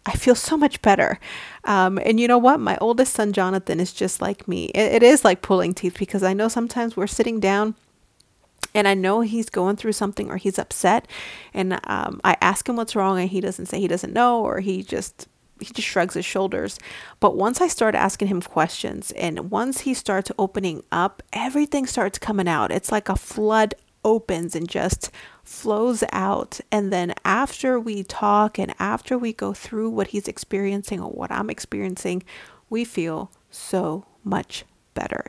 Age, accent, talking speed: 30-49, American, 190 wpm